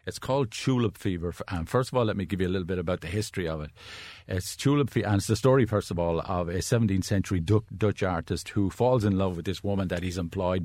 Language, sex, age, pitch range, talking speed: English, male, 50-69, 90-105 Hz, 265 wpm